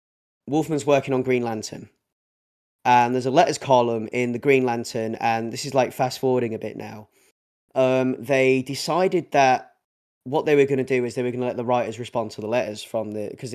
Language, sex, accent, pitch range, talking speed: English, male, British, 115-140 Hz, 215 wpm